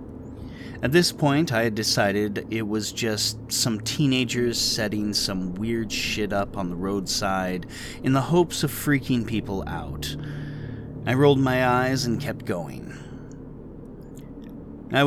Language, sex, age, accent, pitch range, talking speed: English, male, 30-49, American, 105-145 Hz, 135 wpm